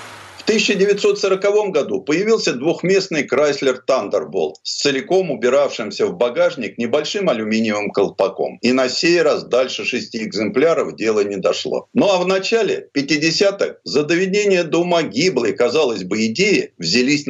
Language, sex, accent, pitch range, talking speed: Russian, male, native, 130-210 Hz, 130 wpm